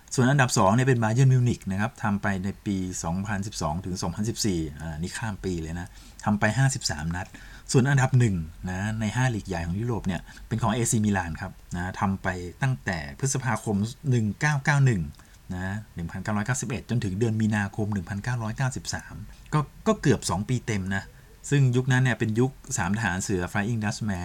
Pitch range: 95-125 Hz